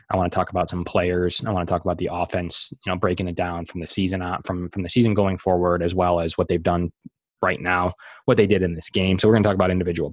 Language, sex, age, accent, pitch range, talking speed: English, male, 20-39, American, 90-100 Hz, 295 wpm